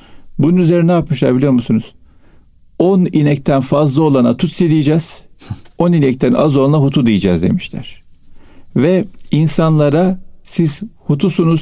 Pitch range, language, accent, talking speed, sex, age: 130-170 Hz, Turkish, native, 120 wpm, male, 50-69